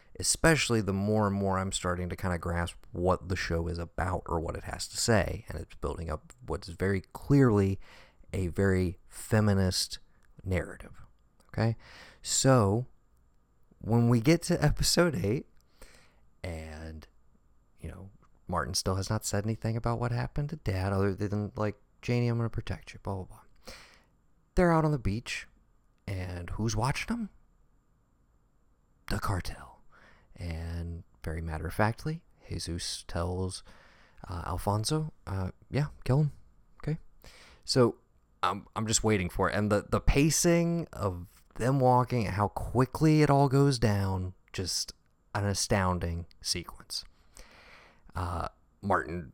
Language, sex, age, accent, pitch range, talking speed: English, male, 30-49, American, 90-120 Hz, 140 wpm